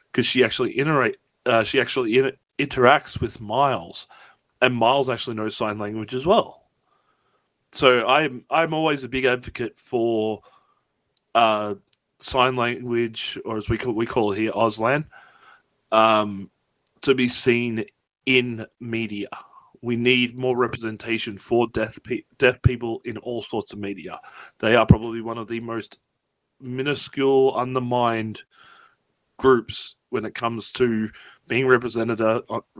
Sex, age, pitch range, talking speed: male, 30-49, 110-135 Hz, 140 wpm